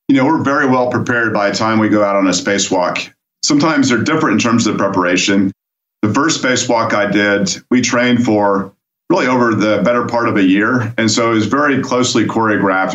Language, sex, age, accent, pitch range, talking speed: English, male, 40-59, American, 105-125 Hz, 210 wpm